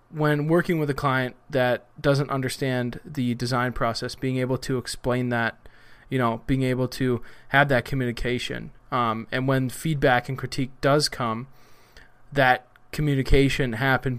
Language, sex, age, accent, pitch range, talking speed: English, male, 20-39, American, 120-140 Hz, 150 wpm